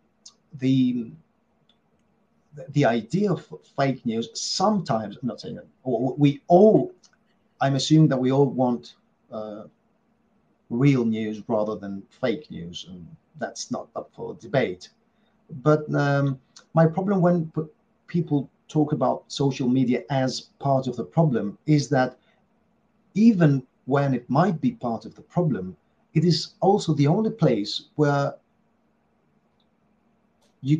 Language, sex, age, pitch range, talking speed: Greek, male, 40-59, 120-165 Hz, 130 wpm